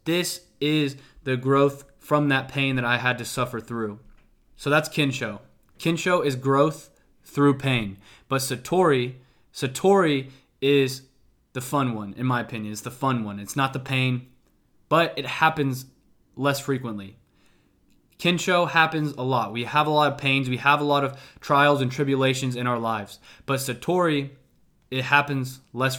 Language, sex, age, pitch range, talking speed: English, male, 20-39, 125-150 Hz, 160 wpm